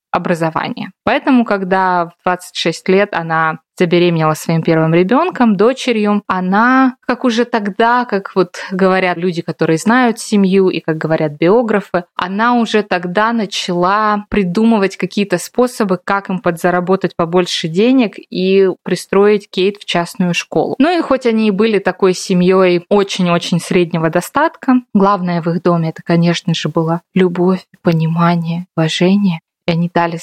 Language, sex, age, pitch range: Russian, female, 20-39, 175-215 Hz